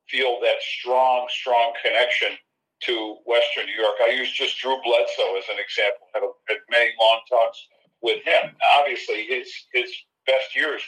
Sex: male